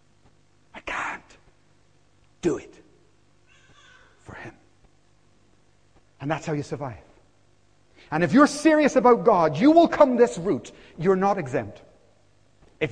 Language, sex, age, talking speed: English, male, 40-59, 120 wpm